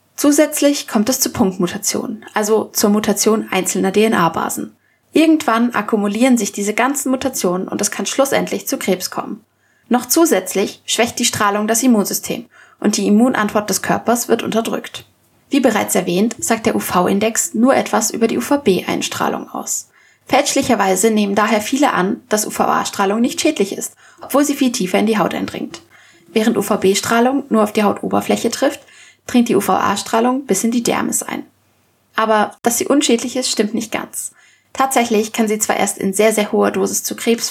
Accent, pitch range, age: German, 210-260 Hz, 20-39